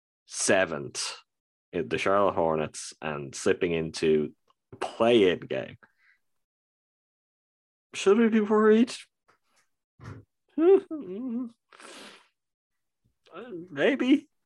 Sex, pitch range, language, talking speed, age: male, 115-185 Hz, English, 65 wpm, 20-39